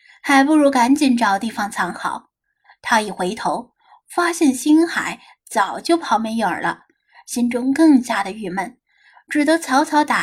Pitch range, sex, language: 220-300 Hz, female, Chinese